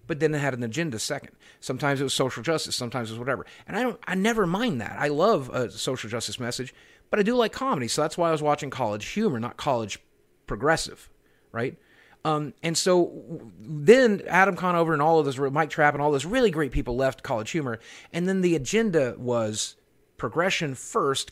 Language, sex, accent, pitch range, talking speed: English, male, American, 130-195 Hz, 210 wpm